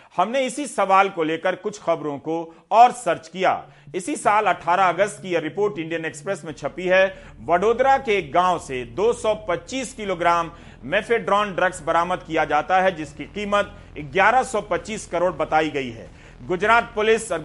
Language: Hindi